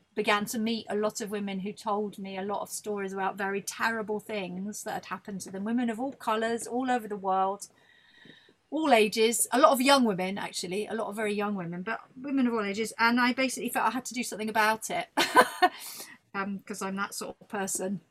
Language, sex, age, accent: English, female, 40-59, British